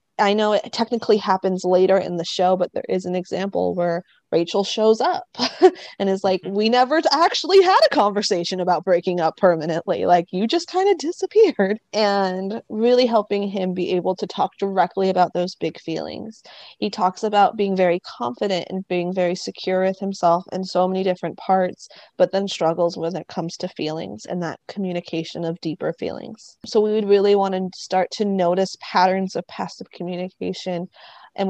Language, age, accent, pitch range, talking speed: English, 20-39, American, 180-225 Hz, 180 wpm